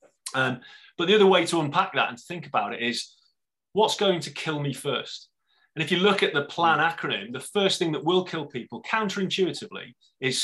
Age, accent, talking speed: 30-49, British, 205 wpm